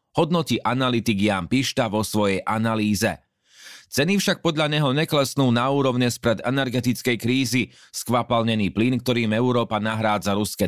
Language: Slovak